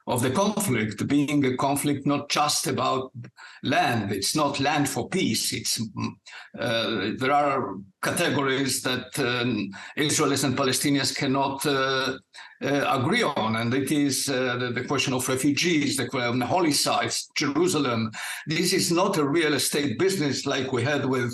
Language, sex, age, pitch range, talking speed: English, male, 60-79, 130-165 Hz, 155 wpm